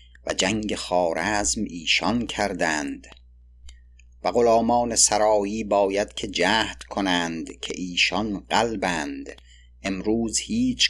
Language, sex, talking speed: Persian, male, 95 wpm